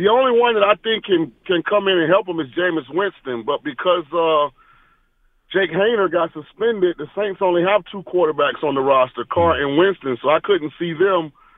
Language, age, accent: English, 30-49, American